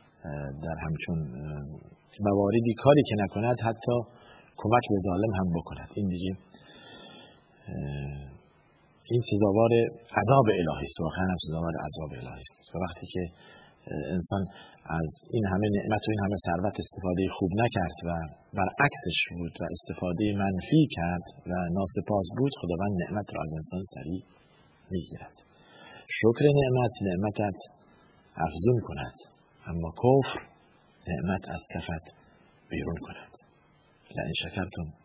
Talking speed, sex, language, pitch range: 120 wpm, male, Persian, 85-110 Hz